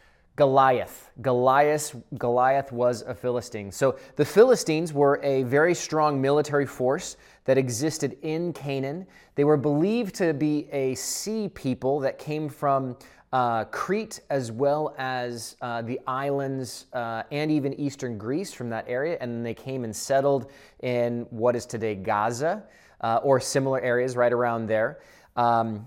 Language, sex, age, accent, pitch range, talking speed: English, male, 20-39, American, 115-145 Hz, 150 wpm